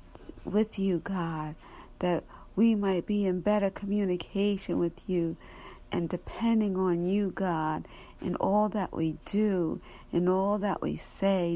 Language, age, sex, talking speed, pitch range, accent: English, 50-69, female, 140 wpm, 175-205 Hz, American